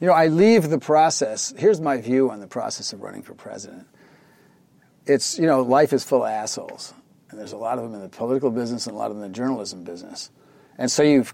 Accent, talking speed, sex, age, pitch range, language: American, 245 wpm, male, 40-59, 115-150 Hz, English